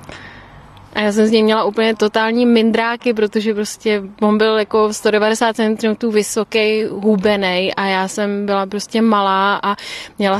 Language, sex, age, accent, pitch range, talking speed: Czech, female, 20-39, native, 195-225 Hz, 145 wpm